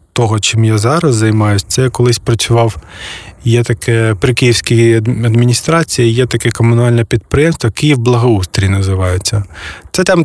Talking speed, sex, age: 130 wpm, male, 20-39